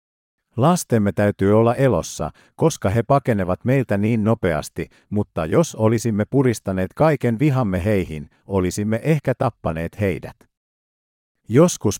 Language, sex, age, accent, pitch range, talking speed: Finnish, male, 50-69, native, 90-130 Hz, 110 wpm